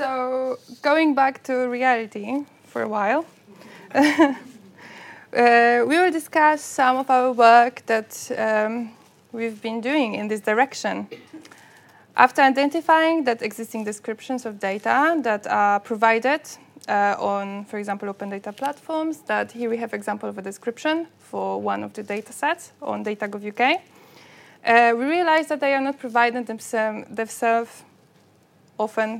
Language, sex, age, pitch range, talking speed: English, female, 20-39, 215-275 Hz, 145 wpm